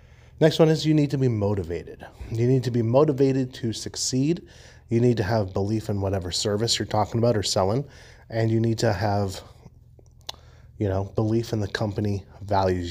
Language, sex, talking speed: English, male, 185 wpm